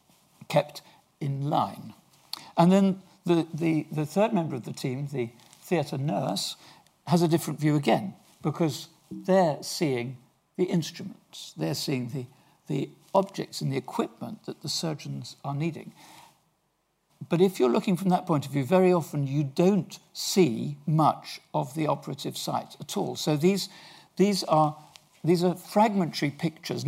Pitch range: 145-180 Hz